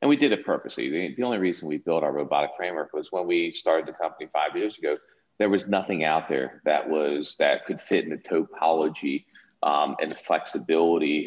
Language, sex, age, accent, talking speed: English, male, 40-59, American, 210 wpm